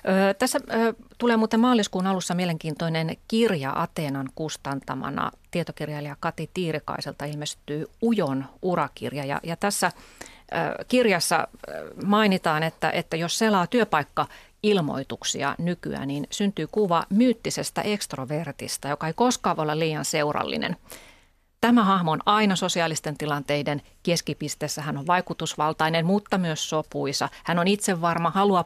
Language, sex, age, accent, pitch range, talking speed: Finnish, female, 30-49, native, 155-205 Hz, 125 wpm